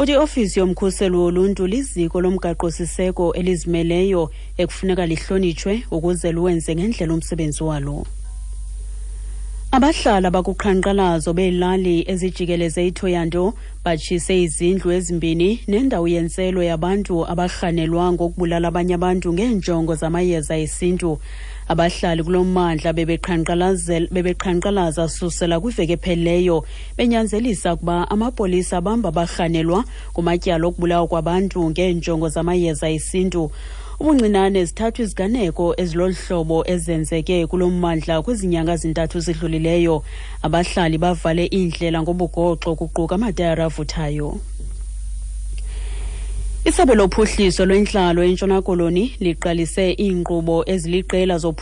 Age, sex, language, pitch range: 30-49, female, English, 165-185 Hz